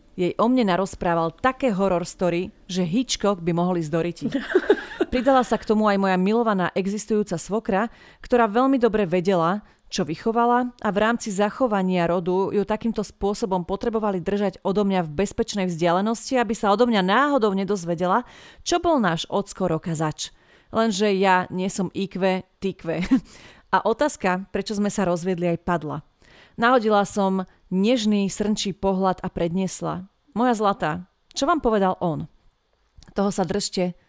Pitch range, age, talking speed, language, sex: 175-215 Hz, 30-49, 145 wpm, Slovak, female